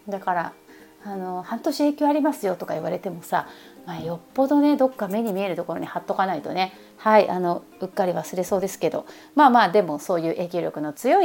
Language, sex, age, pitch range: Japanese, female, 30-49, 185-275 Hz